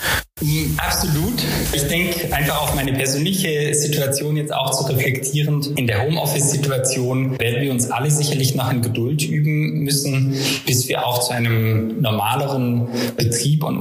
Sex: male